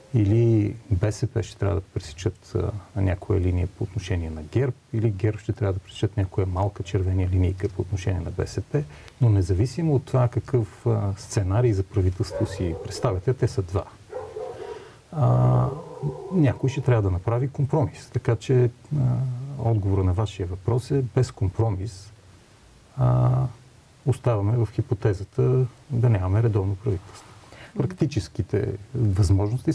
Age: 40-59